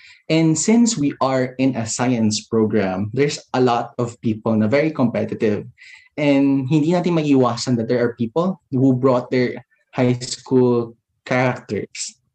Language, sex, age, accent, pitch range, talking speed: Filipino, male, 20-39, native, 110-140 Hz, 145 wpm